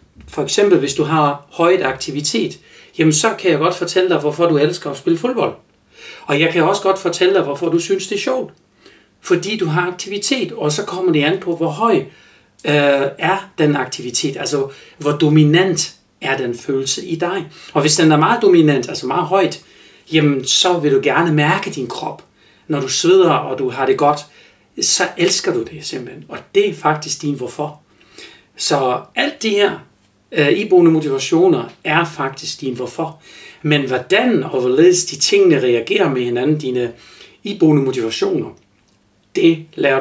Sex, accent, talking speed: male, native, 175 wpm